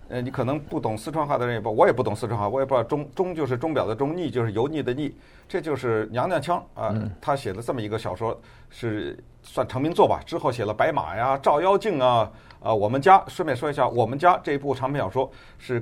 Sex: male